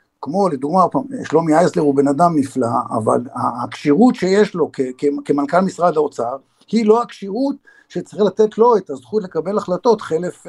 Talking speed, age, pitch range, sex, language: 160 wpm, 50-69, 145-200 Hz, male, Hebrew